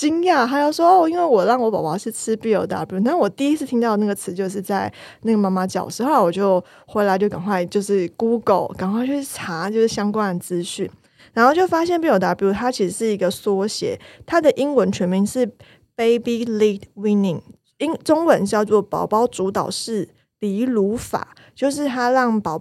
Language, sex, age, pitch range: Chinese, female, 20-39, 185-240 Hz